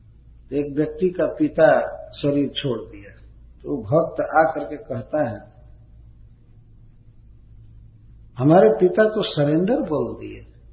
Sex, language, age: male, Hindi, 60-79